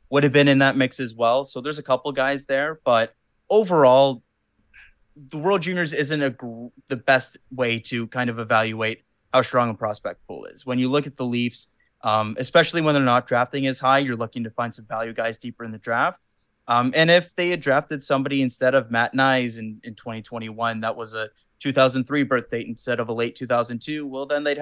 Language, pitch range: English, 115-135 Hz